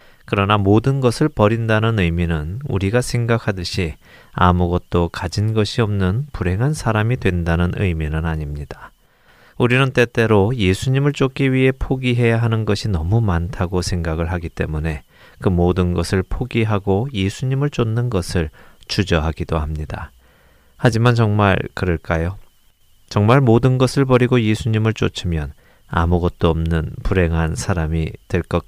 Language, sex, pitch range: Korean, male, 85-120 Hz